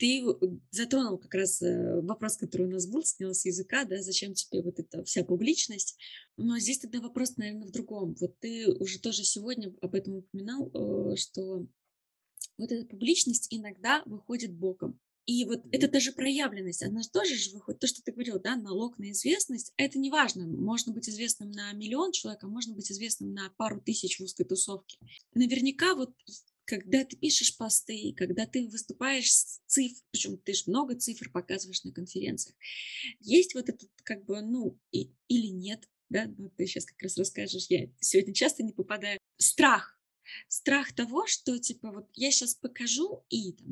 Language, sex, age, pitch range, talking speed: Russian, female, 20-39, 195-255 Hz, 175 wpm